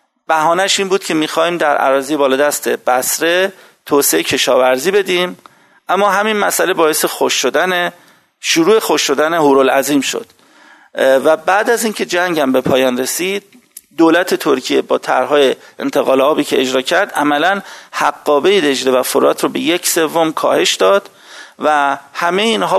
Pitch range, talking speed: 140-195 Hz, 150 wpm